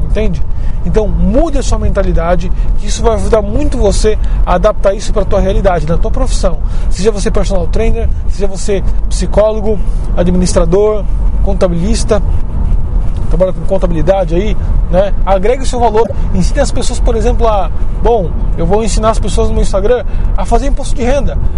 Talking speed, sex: 165 wpm, male